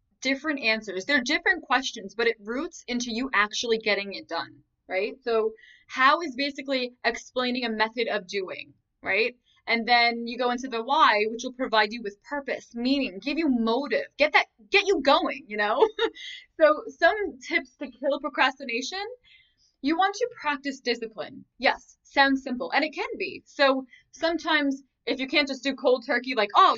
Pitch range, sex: 235-300 Hz, female